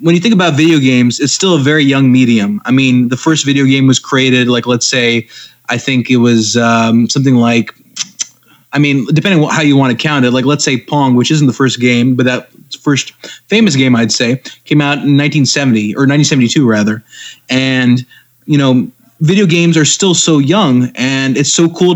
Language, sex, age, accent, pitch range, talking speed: English, male, 20-39, American, 125-150 Hz, 210 wpm